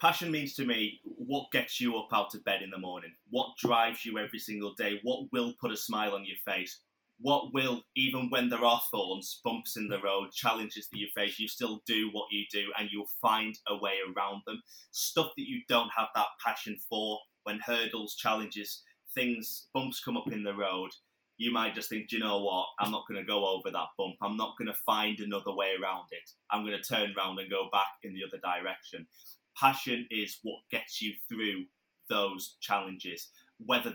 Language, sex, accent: English, male, British